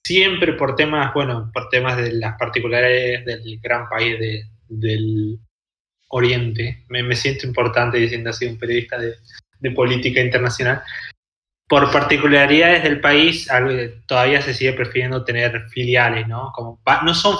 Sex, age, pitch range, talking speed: male, 20-39, 120-140 Hz, 135 wpm